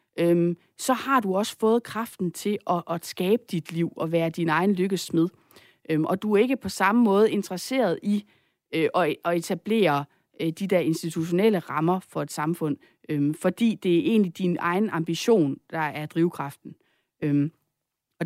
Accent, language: native, Danish